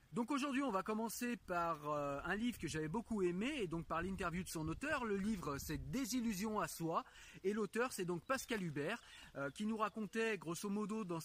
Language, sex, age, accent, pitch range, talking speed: French, male, 30-49, French, 165-225 Hz, 220 wpm